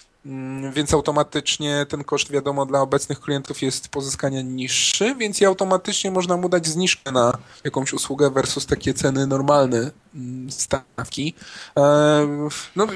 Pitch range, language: 135-170 Hz, Polish